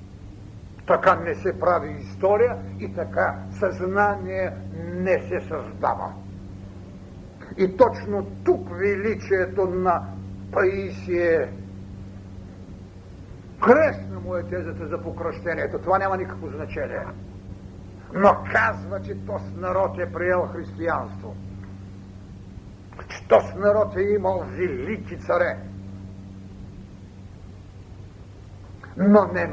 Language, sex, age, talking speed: Bulgarian, male, 60-79, 90 wpm